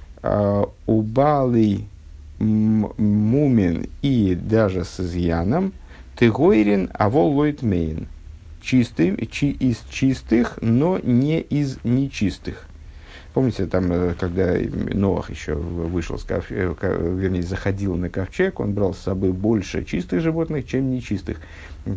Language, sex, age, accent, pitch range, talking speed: Russian, male, 50-69, native, 90-115 Hz, 100 wpm